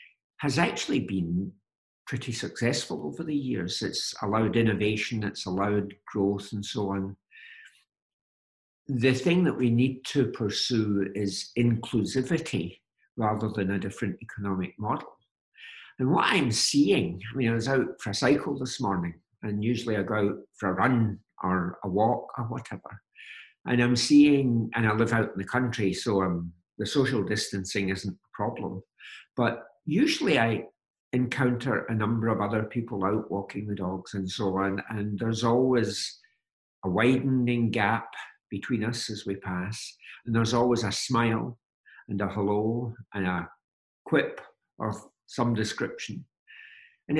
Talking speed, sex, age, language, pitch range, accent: 150 wpm, male, 60-79, English, 100-130 Hz, British